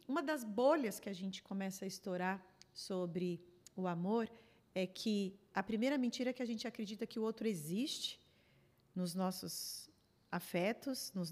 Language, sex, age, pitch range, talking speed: Portuguese, female, 40-59, 185-230 Hz, 160 wpm